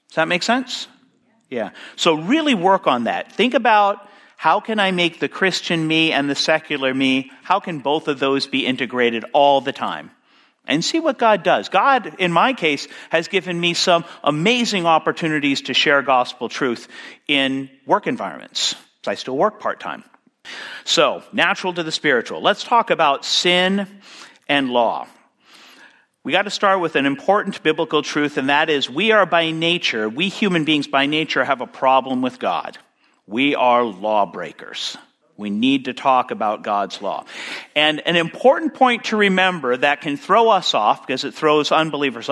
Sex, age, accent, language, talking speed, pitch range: male, 50-69, American, English, 170 wpm, 140-205 Hz